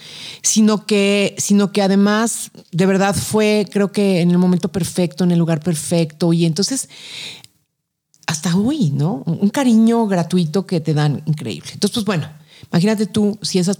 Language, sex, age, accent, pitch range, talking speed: Spanish, female, 40-59, Mexican, 165-200 Hz, 165 wpm